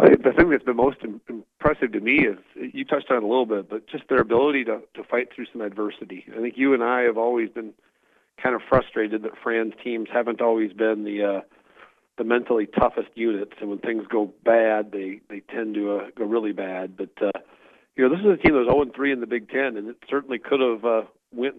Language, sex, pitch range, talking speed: English, male, 110-125 Hz, 240 wpm